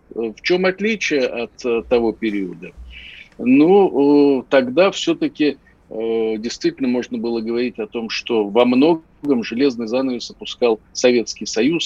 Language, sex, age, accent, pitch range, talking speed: Russian, male, 50-69, native, 105-145 Hz, 115 wpm